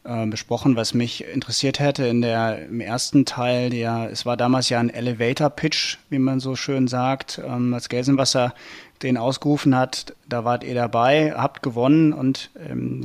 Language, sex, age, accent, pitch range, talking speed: German, male, 30-49, German, 130-150 Hz, 150 wpm